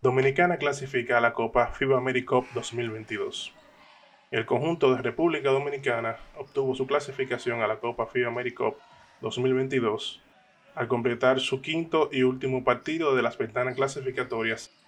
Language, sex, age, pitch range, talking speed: Spanish, male, 20-39, 120-135 Hz, 135 wpm